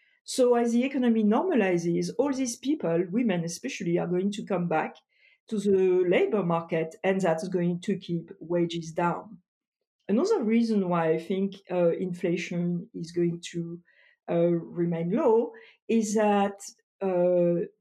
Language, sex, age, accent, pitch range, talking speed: English, female, 50-69, French, 175-215 Hz, 140 wpm